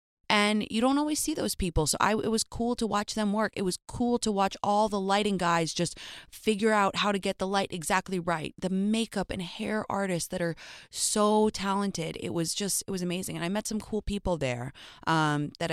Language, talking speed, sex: English, 225 wpm, female